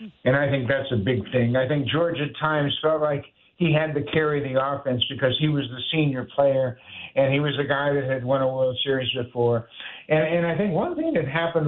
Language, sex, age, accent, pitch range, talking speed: English, male, 60-79, American, 135-165 Hz, 235 wpm